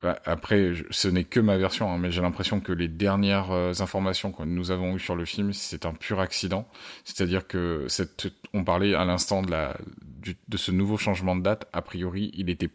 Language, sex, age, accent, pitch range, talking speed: French, male, 20-39, French, 90-105 Hz, 210 wpm